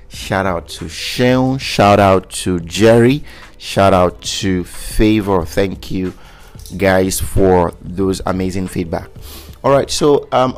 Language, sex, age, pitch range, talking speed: English, male, 30-49, 90-110 Hz, 130 wpm